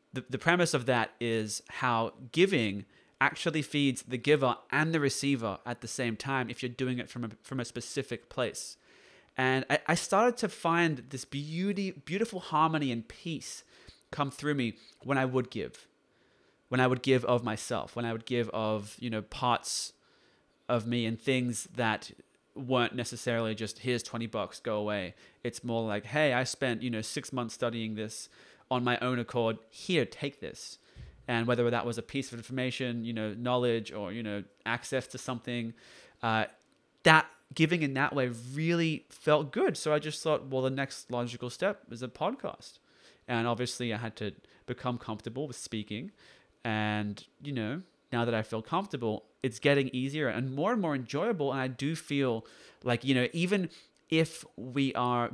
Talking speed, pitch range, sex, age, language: 180 wpm, 115-140 Hz, male, 20-39, English